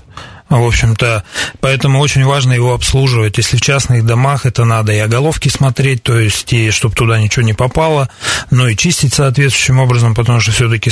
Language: Russian